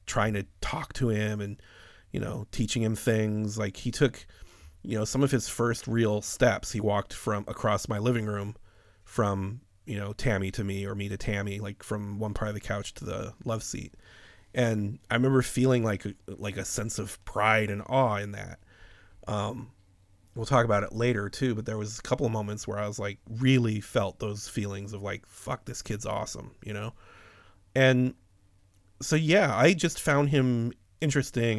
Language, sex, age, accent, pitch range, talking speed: English, male, 30-49, American, 100-120 Hz, 195 wpm